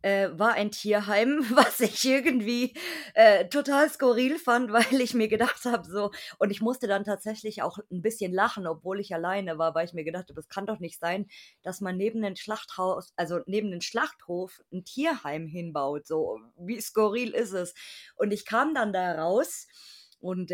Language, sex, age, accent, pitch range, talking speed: German, female, 20-39, German, 190-240 Hz, 175 wpm